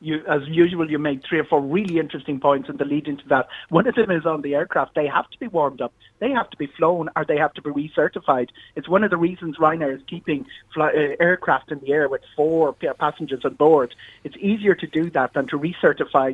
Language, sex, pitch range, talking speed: English, male, 145-180 Hz, 250 wpm